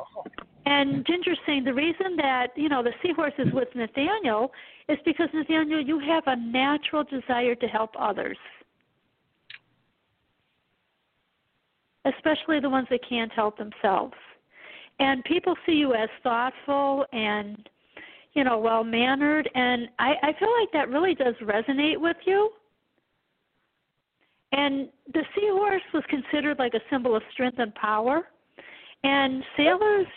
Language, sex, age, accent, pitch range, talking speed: English, female, 50-69, American, 250-315 Hz, 135 wpm